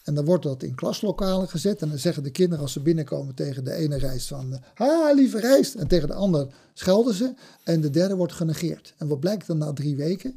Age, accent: 50-69, Dutch